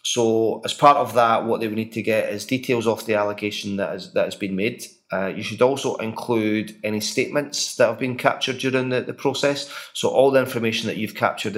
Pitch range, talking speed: 105-130 Hz, 230 wpm